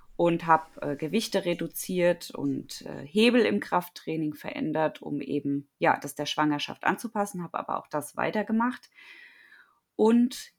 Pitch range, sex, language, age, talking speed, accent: 155-205 Hz, female, German, 20-39, 135 wpm, German